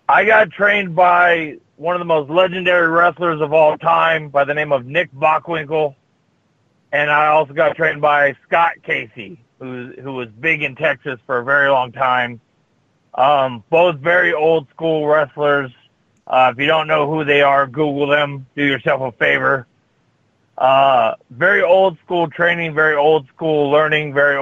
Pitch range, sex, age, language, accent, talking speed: 130-155 Hz, male, 40-59, English, American, 160 wpm